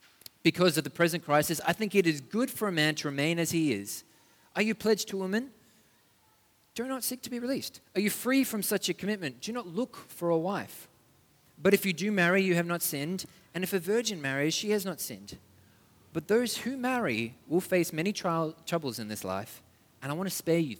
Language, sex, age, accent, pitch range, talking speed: English, male, 30-49, Australian, 150-220 Hz, 225 wpm